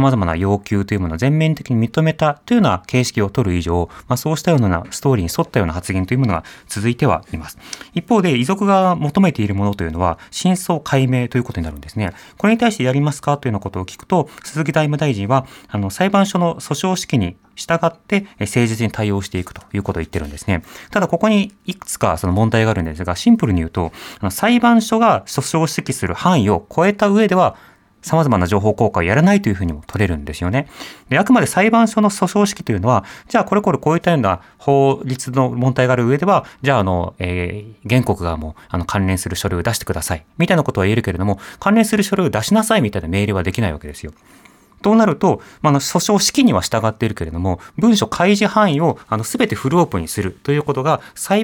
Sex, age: male, 30-49